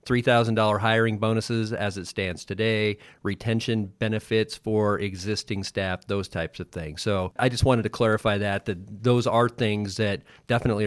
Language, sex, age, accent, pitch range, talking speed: English, male, 40-59, American, 100-115 Hz, 155 wpm